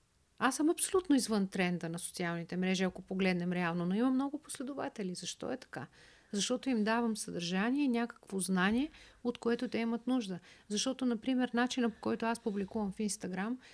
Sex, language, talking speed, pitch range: female, Bulgarian, 170 wpm, 205-255 Hz